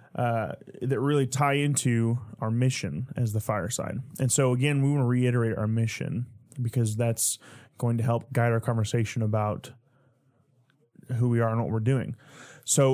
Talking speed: 165 wpm